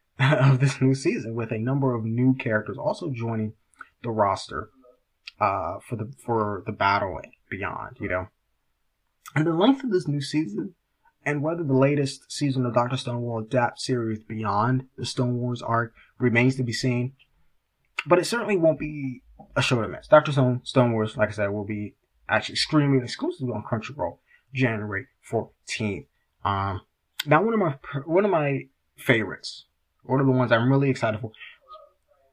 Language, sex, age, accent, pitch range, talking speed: English, male, 20-39, American, 110-140 Hz, 175 wpm